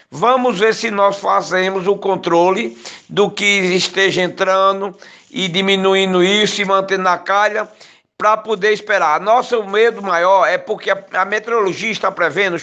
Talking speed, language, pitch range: 145 wpm, Portuguese, 185-220 Hz